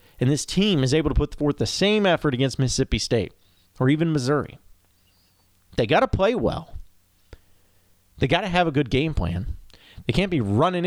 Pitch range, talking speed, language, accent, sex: 90-130 Hz, 190 wpm, English, American, male